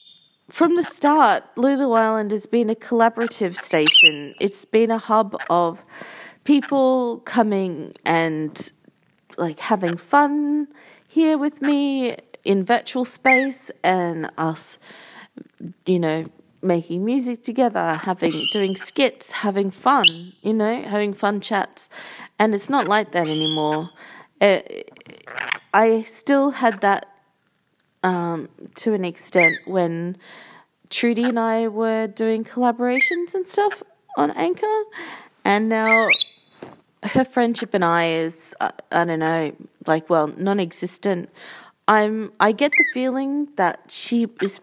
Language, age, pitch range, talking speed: English, 40-59, 185-260 Hz, 120 wpm